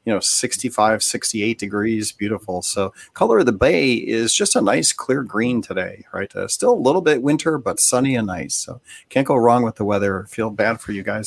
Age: 40-59